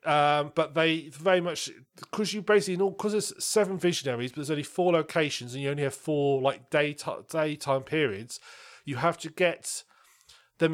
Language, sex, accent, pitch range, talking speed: English, male, British, 130-170 Hz, 180 wpm